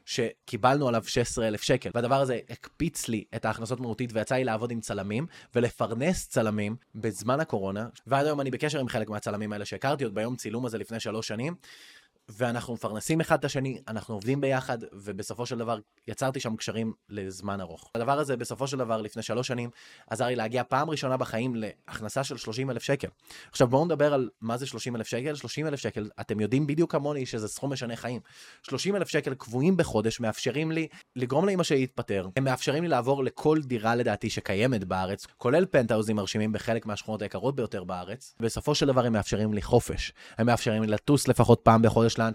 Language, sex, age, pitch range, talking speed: Hebrew, male, 20-39, 110-135 Hz, 155 wpm